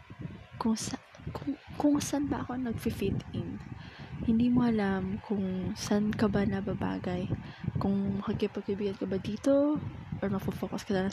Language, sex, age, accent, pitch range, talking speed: Filipino, female, 20-39, native, 200-235 Hz, 140 wpm